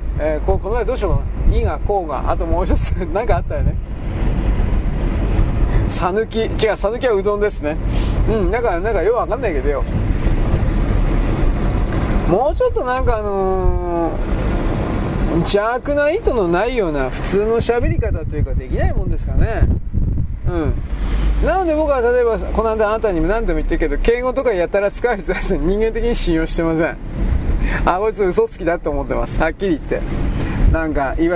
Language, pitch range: Japanese, 170-250 Hz